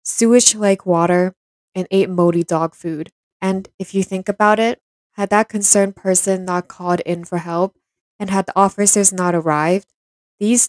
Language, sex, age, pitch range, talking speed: English, female, 10-29, 175-200 Hz, 165 wpm